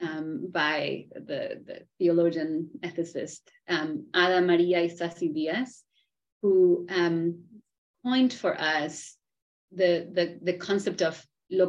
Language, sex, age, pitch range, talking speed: English, female, 30-49, 175-235 Hz, 115 wpm